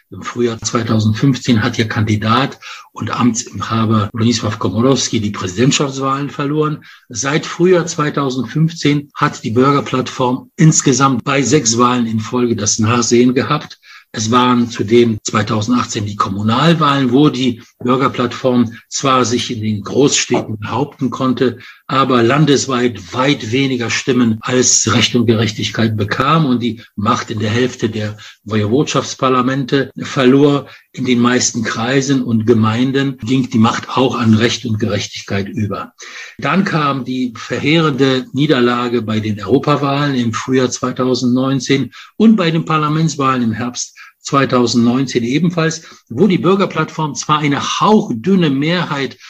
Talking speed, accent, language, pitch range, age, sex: 130 wpm, German, English, 115-140 Hz, 60-79, male